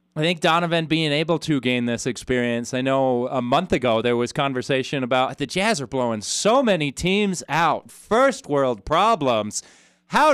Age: 30-49